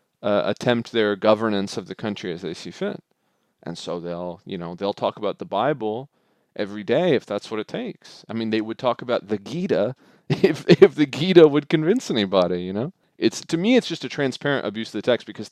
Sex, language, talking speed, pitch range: male, English, 220 wpm, 100-135 Hz